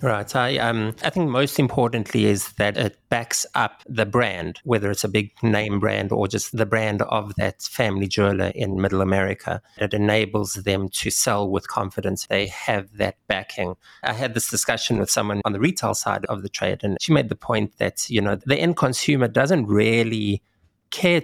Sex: male